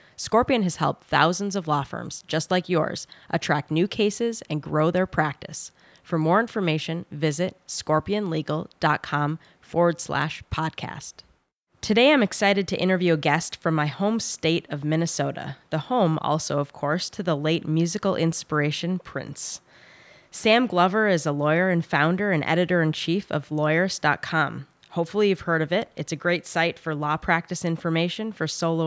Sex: female